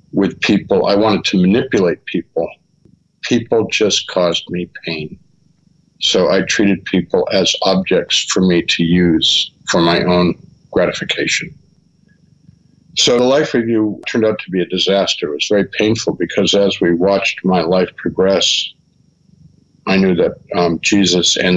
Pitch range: 95-135 Hz